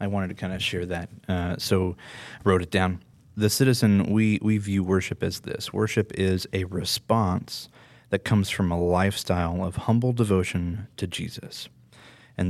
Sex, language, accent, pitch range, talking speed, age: male, English, American, 90-110 Hz, 170 wpm, 30-49